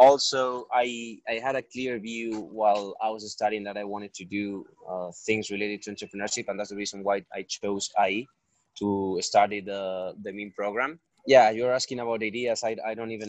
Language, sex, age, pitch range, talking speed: English, male, 20-39, 95-110 Hz, 200 wpm